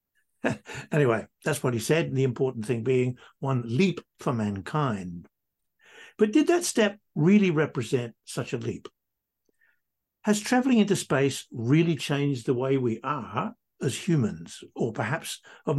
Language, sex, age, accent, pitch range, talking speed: English, male, 60-79, British, 125-185 Hz, 145 wpm